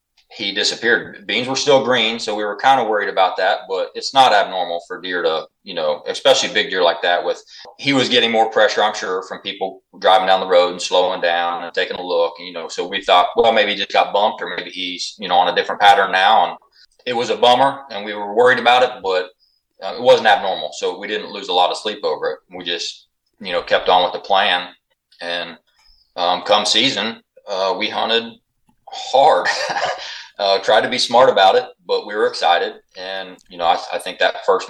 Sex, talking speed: male, 230 wpm